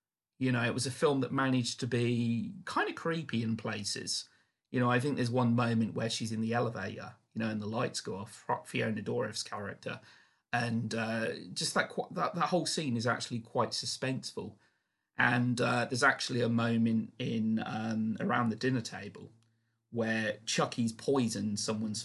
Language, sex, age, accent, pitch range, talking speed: English, male, 40-59, British, 110-125 Hz, 175 wpm